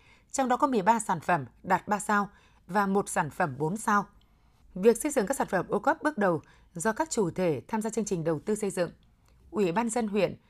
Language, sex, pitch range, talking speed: Vietnamese, female, 175-230 Hz, 240 wpm